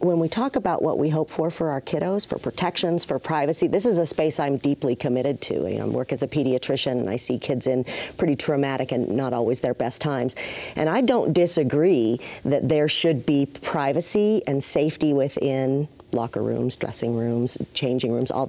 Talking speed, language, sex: 200 wpm, English, female